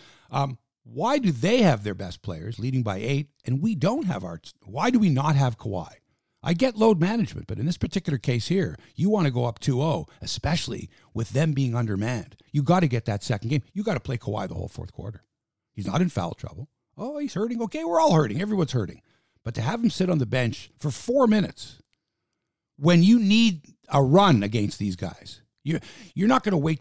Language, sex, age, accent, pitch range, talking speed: English, male, 60-79, American, 110-165 Hz, 220 wpm